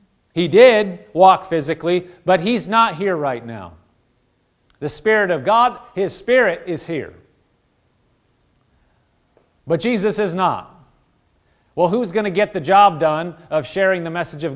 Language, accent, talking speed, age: English, American, 145 wpm, 40-59